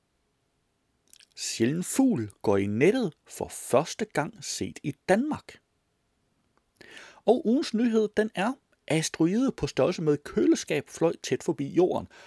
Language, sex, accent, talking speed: Danish, male, native, 120 wpm